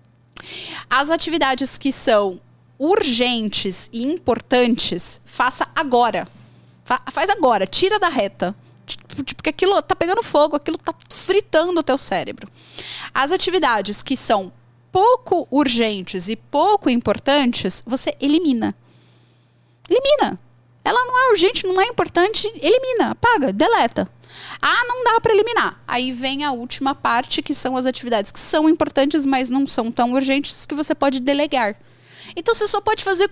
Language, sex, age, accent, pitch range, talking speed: Portuguese, female, 20-39, Brazilian, 240-350 Hz, 140 wpm